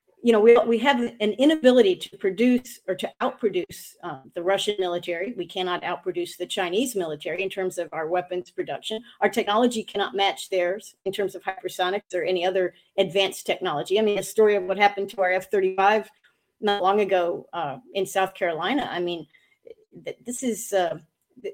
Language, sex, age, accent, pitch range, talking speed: English, female, 40-59, American, 190-255 Hz, 180 wpm